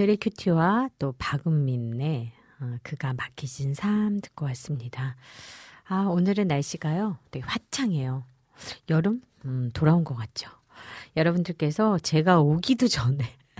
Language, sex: Korean, female